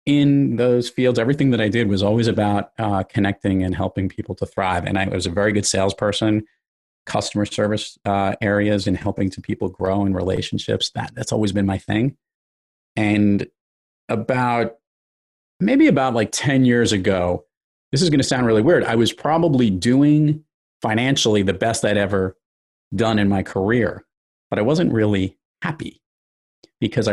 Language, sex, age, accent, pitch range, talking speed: English, male, 40-59, American, 95-120 Hz, 165 wpm